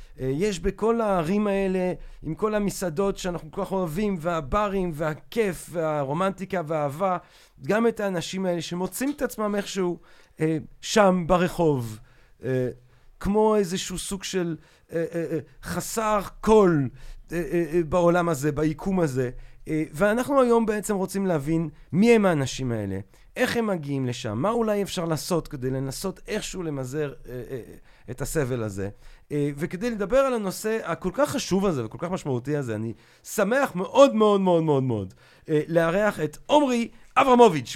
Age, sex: 40-59, male